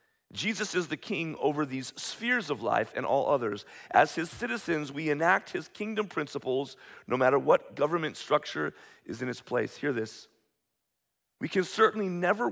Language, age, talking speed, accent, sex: English, 40-59, 170 wpm, American, male